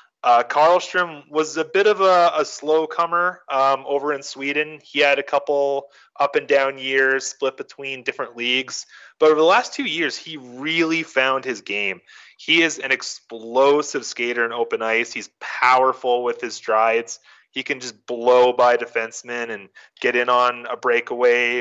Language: English